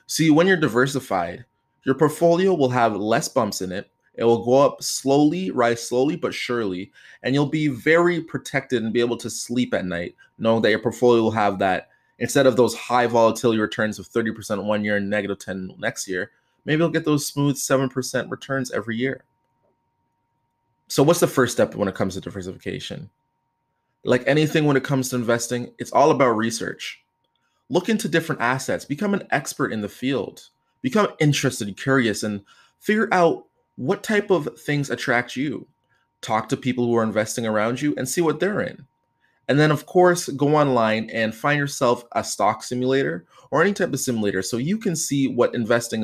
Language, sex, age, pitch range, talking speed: English, male, 20-39, 110-150 Hz, 185 wpm